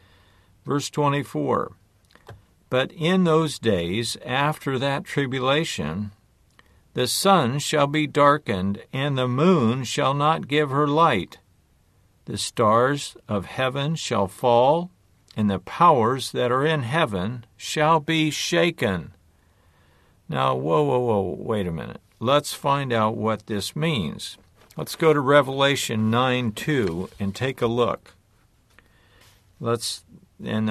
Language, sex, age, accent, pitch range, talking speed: English, male, 60-79, American, 100-145 Hz, 120 wpm